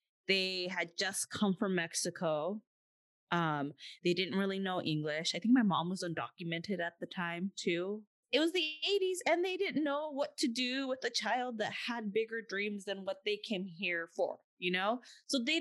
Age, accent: 20-39, American